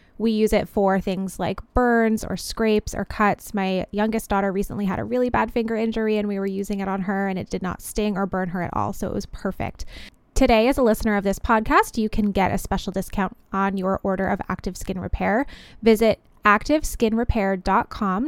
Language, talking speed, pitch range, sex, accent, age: English, 210 wpm, 195-235 Hz, female, American, 20-39